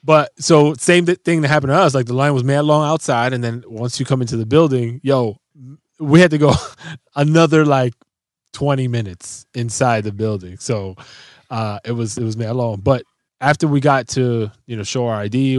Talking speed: 210 wpm